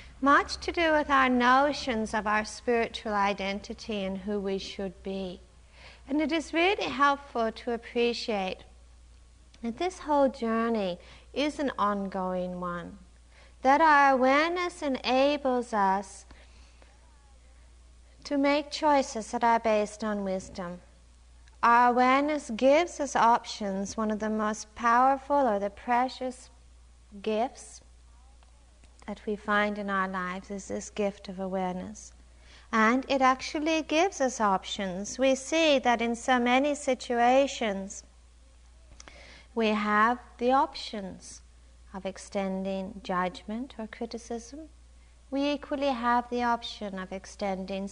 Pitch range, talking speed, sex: 190-255 Hz, 120 wpm, female